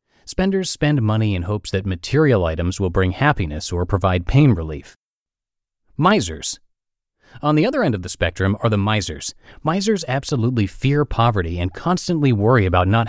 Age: 30-49